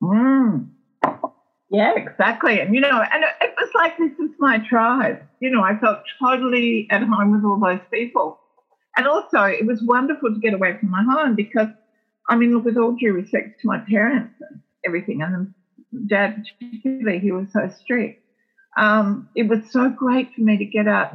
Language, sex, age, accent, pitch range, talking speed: English, female, 50-69, Australian, 190-245 Hz, 185 wpm